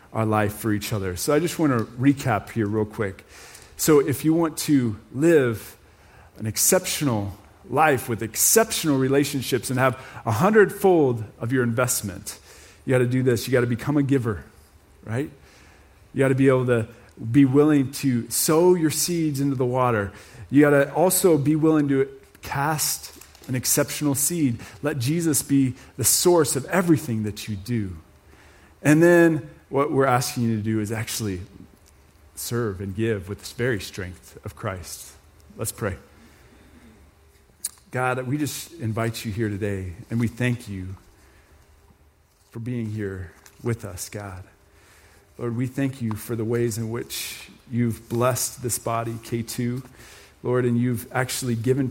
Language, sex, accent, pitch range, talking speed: English, male, American, 100-135 Hz, 160 wpm